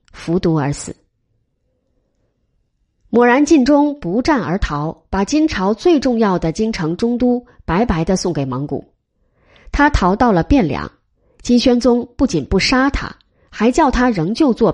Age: 20-39